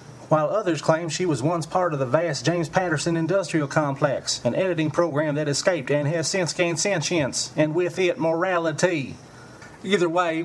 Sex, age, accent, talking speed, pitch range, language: male, 30-49, American, 170 wpm, 145-185 Hz, English